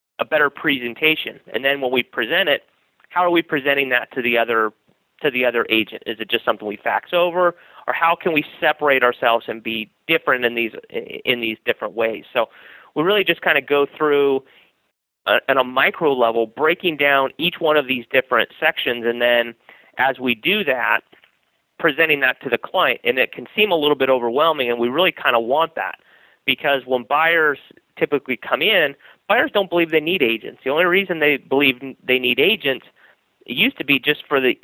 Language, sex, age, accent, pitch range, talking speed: English, male, 30-49, American, 120-155 Hz, 205 wpm